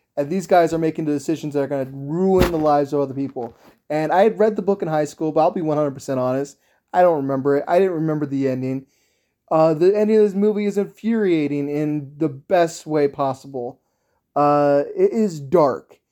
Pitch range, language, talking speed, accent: 145-180 Hz, English, 210 wpm, American